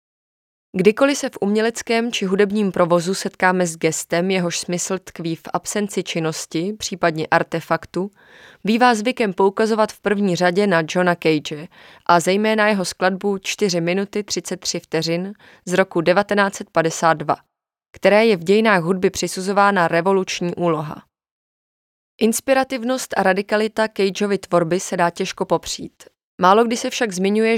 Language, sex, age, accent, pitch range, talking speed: Czech, female, 20-39, native, 175-210 Hz, 130 wpm